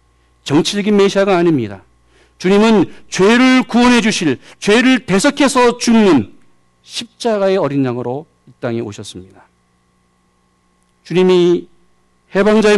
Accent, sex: native, male